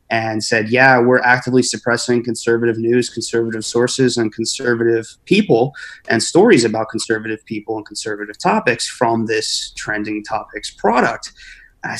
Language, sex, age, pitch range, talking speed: English, male, 30-49, 110-125 Hz, 135 wpm